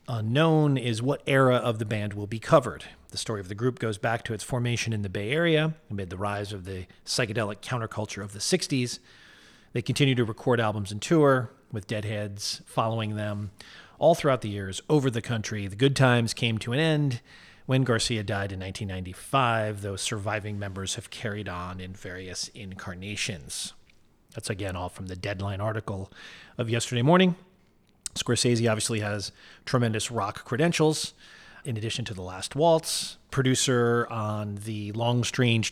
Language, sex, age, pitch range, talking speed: English, male, 40-59, 105-130 Hz, 170 wpm